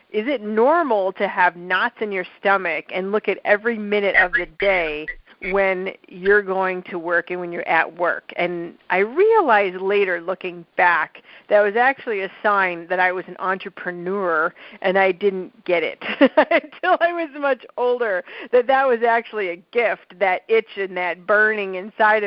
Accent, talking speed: American, 175 wpm